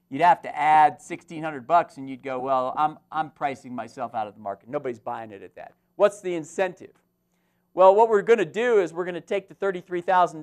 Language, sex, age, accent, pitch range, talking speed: English, male, 50-69, American, 150-185 Hz, 240 wpm